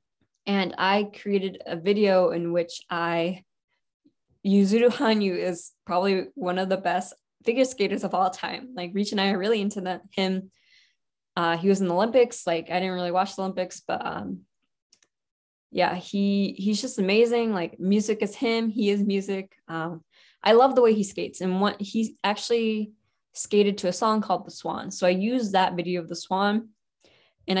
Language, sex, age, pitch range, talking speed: English, female, 10-29, 175-205 Hz, 185 wpm